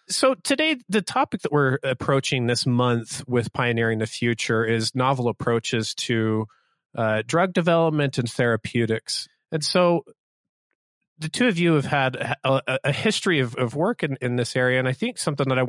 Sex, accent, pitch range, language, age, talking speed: male, American, 120-155 Hz, English, 30-49, 180 wpm